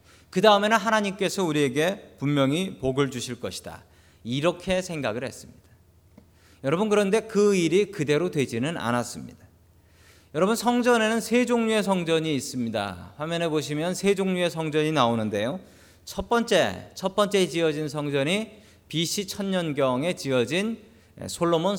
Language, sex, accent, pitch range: Korean, male, native, 125-200 Hz